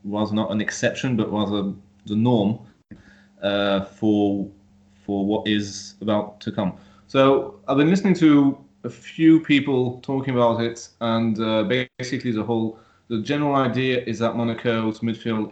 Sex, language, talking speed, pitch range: male, English, 150 wpm, 100-120 Hz